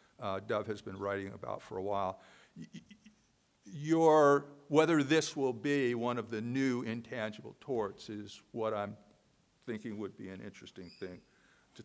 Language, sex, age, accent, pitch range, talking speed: English, male, 60-79, American, 115-160 Hz, 150 wpm